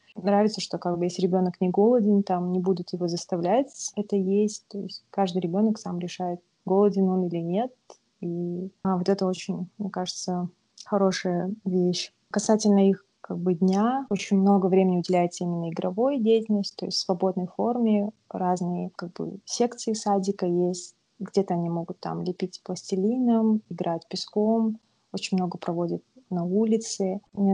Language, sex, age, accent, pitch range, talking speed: Russian, female, 20-39, native, 180-205 Hz, 155 wpm